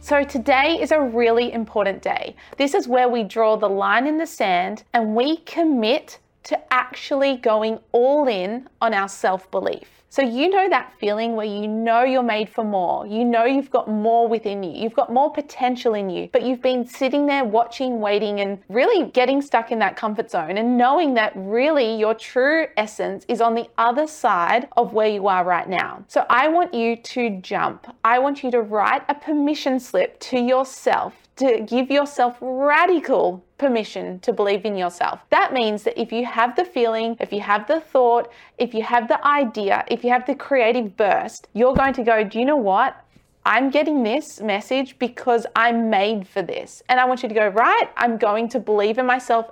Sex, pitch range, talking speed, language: female, 215-270 Hz, 200 wpm, English